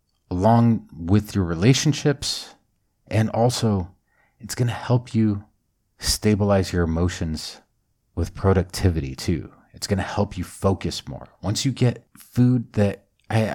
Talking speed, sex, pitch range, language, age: 135 wpm, male, 90-115 Hz, English, 40-59